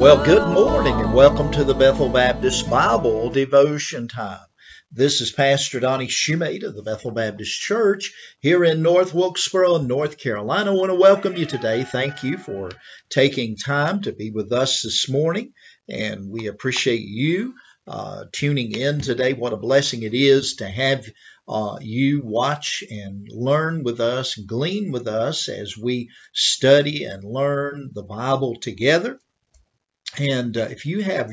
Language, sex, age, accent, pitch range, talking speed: English, male, 50-69, American, 115-145 Hz, 160 wpm